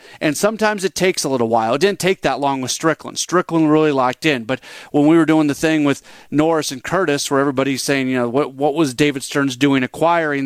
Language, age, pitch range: English, 40-59, 135-170 Hz